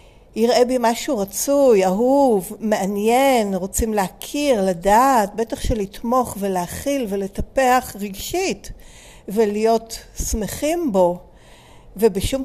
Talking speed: 90 wpm